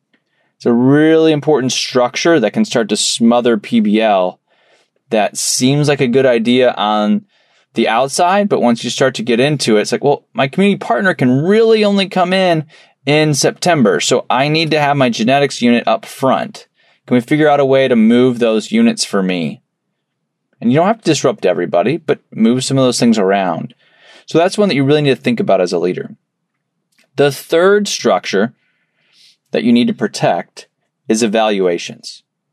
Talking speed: 185 wpm